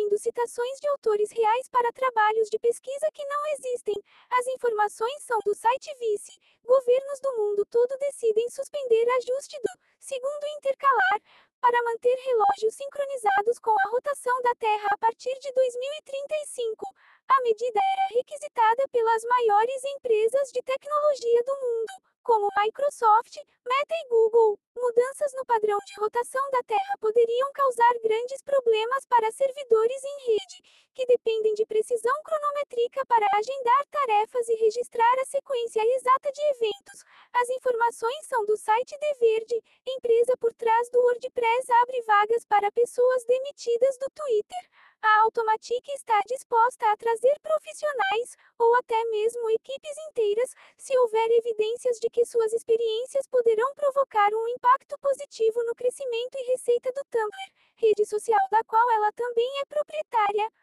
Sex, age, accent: female, 20-39, Brazilian